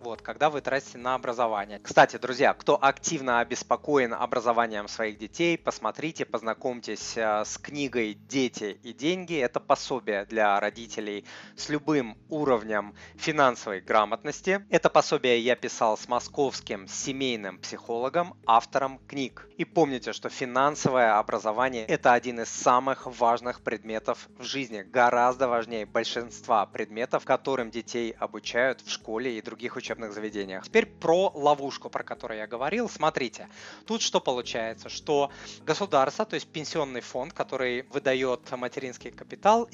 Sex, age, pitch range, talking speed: male, 20-39, 115-150 Hz, 130 wpm